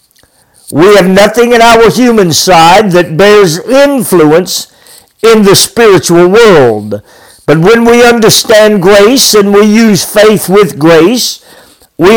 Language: English